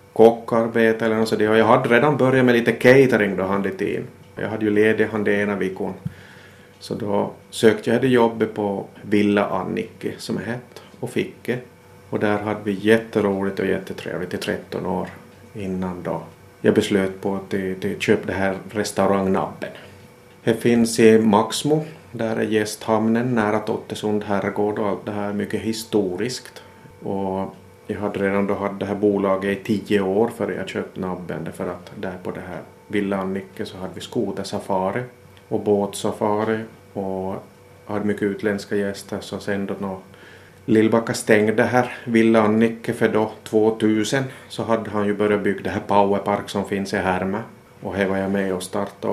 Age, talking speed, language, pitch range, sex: 30-49, 175 wpm, Swedish, 100-110 Hz, male